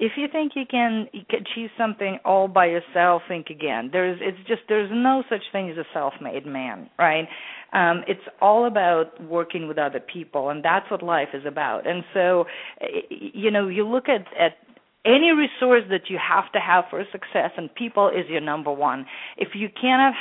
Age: 40-59